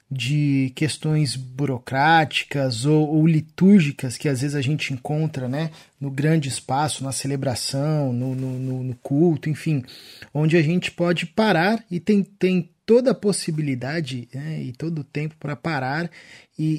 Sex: male